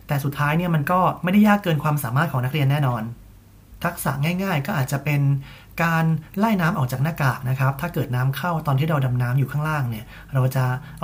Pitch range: 130-165 Hz